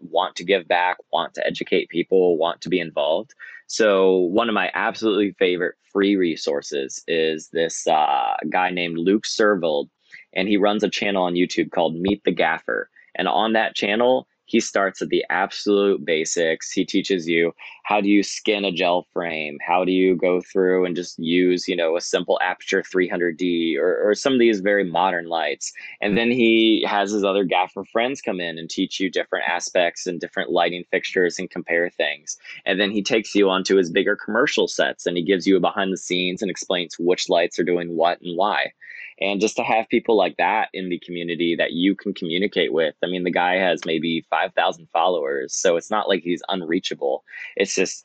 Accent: American